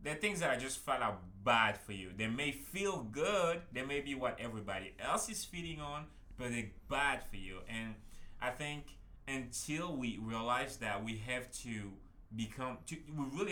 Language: English